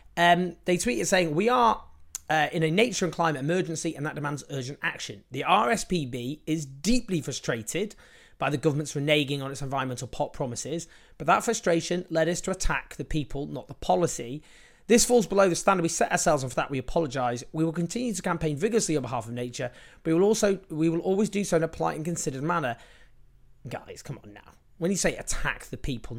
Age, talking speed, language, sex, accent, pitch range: 30-49, 210 wpm, English, male, British, 135-180 Hz